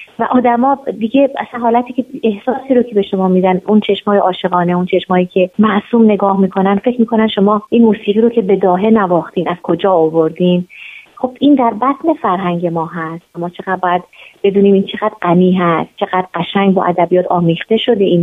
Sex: female